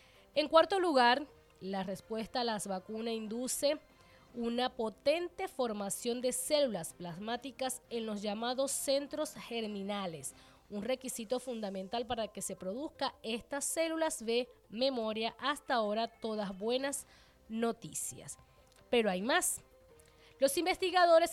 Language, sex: Spanish, female